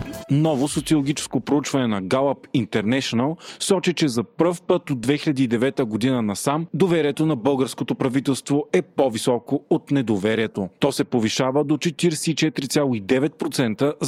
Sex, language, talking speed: male, Bulgarian, 120 wpm